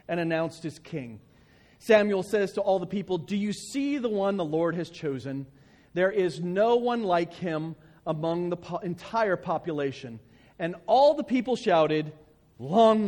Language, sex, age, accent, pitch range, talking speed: English, male, 40-59, American, 165-230 Hz, 160 wpm